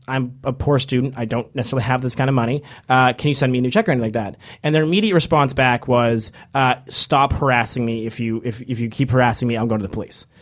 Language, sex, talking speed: English, male, 275 wpm